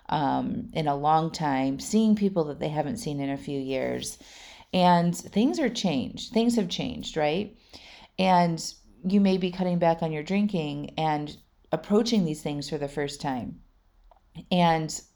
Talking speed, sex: 160 wpm, female